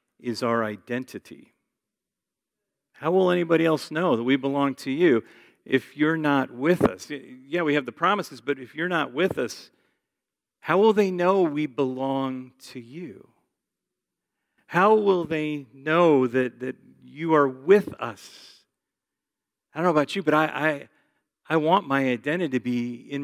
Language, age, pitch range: English, 40-59, 125-150 Hz